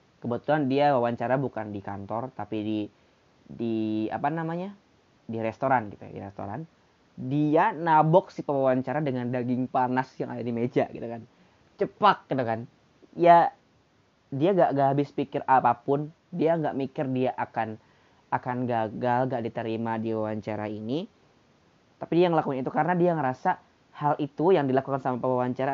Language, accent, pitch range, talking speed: Indonesian, native, 120-150 Hz, 150 wpm